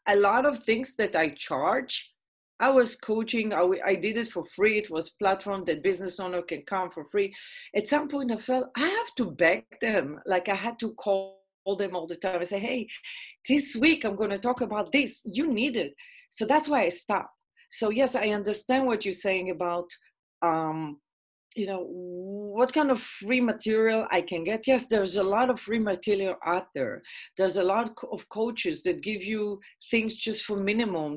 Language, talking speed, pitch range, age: English, 200 wpm, 180-235 Hz, 40-59